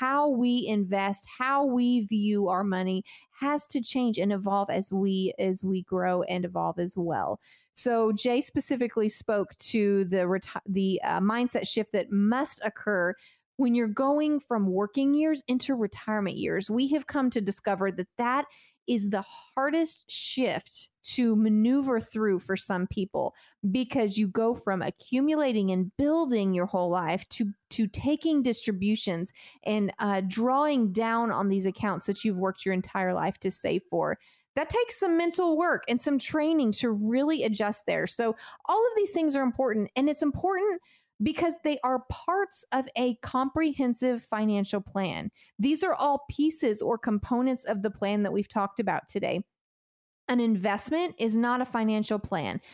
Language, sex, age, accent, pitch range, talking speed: English, female, 30-49, American, 200-275 Hz, 165 wpm